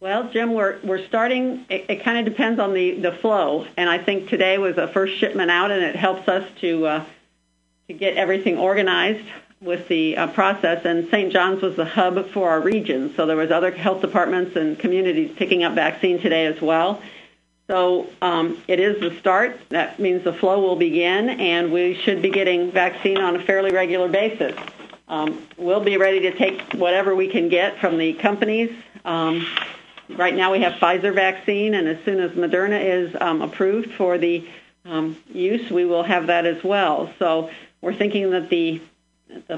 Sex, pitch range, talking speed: female, 170-195 Hz, 195 wpm